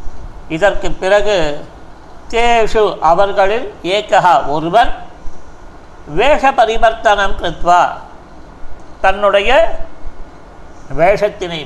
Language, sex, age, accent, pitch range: Tamil, male, 50-69, native, 190-250 Hz